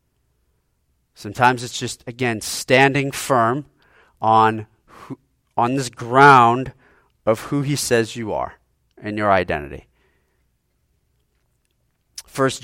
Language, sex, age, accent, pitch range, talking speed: English, male, 40-59, American, 95-125 Hz, 100 wpm